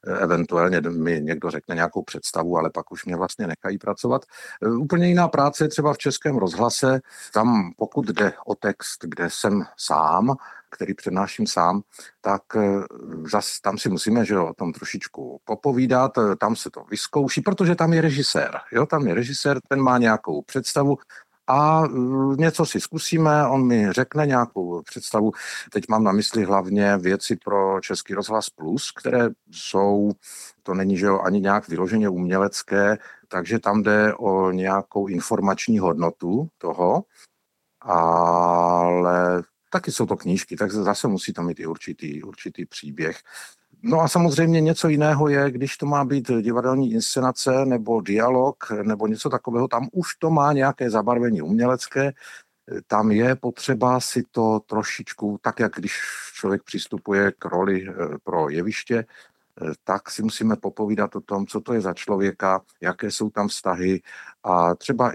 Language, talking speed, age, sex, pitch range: Czech, 150 wpm, 50-69, male, 95-135 Hz